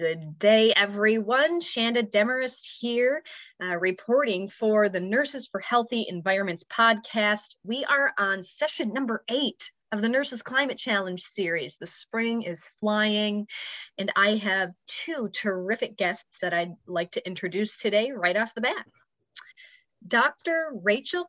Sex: female